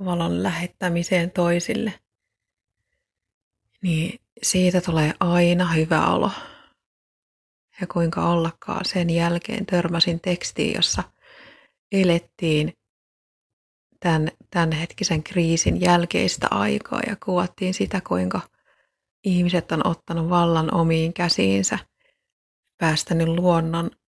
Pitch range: 165-190 Hz